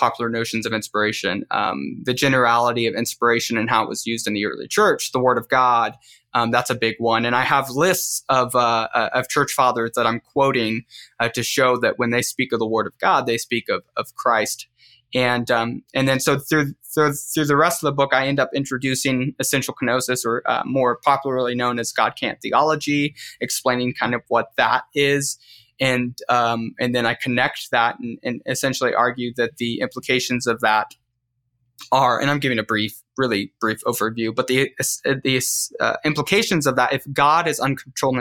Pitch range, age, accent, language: 120-135 Hz, 20-39, American, English